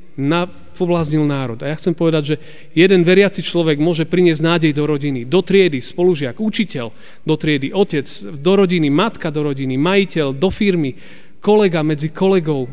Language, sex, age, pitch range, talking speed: Slovak, male, 40-59, 130-175 Hz, 160 wpm